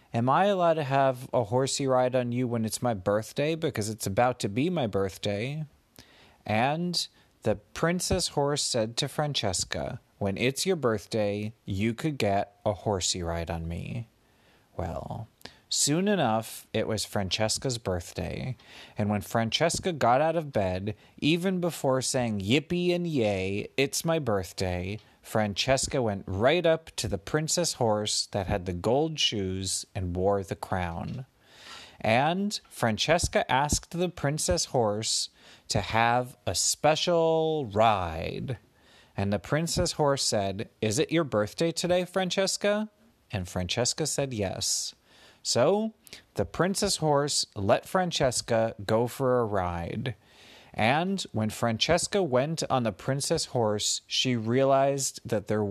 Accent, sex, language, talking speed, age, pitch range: American, male, English, 140 wpm, 30-49, 105-155 Hz